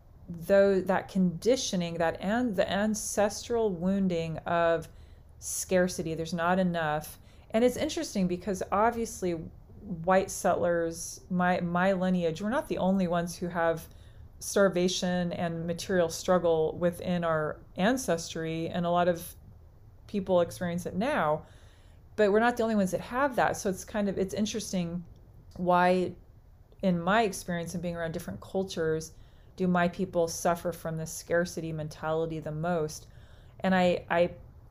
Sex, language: female, English